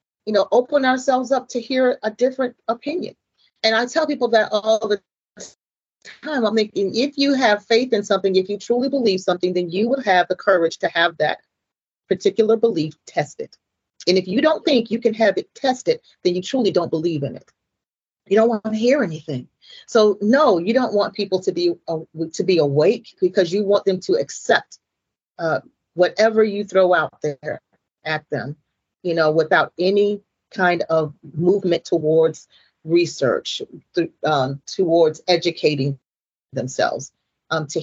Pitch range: 175-245 Hz